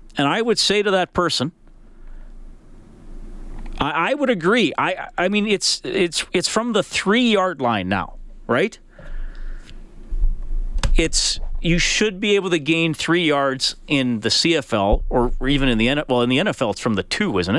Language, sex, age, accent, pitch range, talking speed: English, male, 40-59, American, 125-185 Hz, 165 wpm